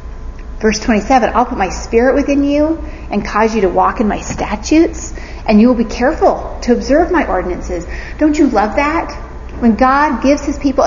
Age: 40-59